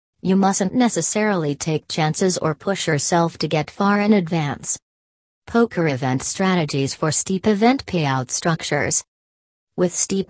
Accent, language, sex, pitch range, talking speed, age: American, English, female, 145-180 Hz, 135 wpm, 40-59